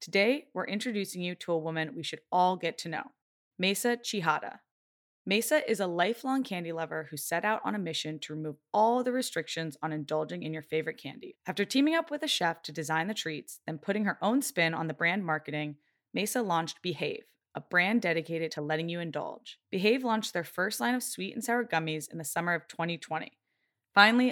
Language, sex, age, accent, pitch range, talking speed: English, female, 20-39, American, 160-215 Hz, 205 wpm